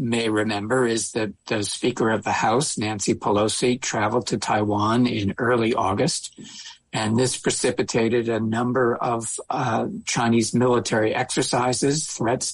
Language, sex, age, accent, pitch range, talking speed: English, male, 60-79, American, 110-125 Hz, 135 wpm